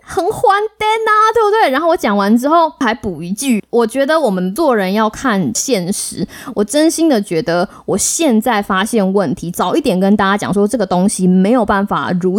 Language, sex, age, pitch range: Chinese, female, 20-39, 190-260 Hz